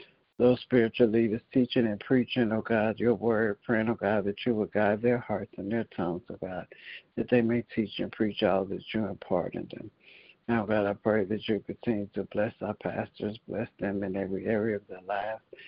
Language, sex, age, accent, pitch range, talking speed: English, male, 60-79, American, 100-115 Hz, 210 wpm